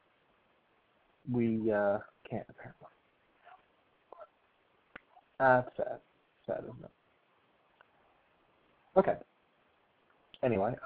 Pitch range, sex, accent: 115-145 Hz, male, American